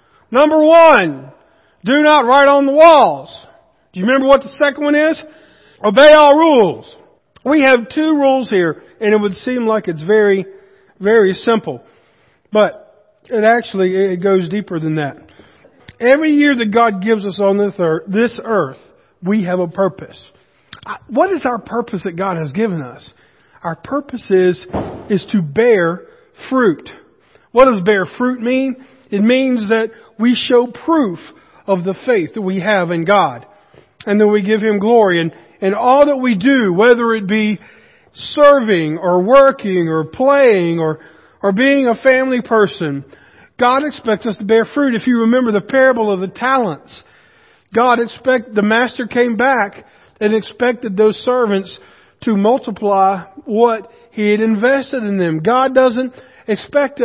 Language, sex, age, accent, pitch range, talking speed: English, male, 50-69, American, 195-265 Hz, 160 wpm